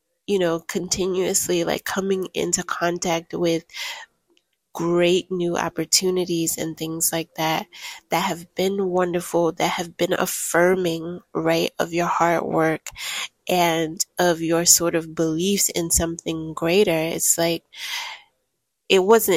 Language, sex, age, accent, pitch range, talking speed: English, female, 20-39, American, 170-195 Hz, 125 wpm